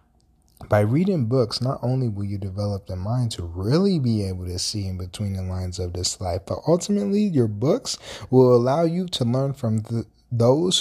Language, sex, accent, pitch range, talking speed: English, male, American, 95-130 Hz, 190 wpm